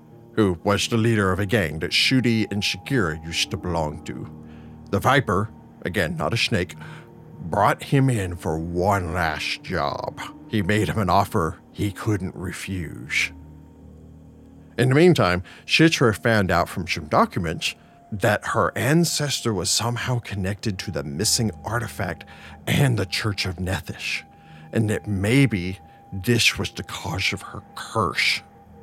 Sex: male